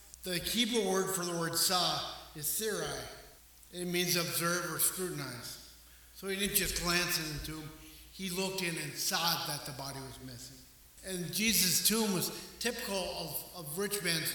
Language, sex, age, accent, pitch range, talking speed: English, male, 50-69, American, 155-190 Hz, 170 wpm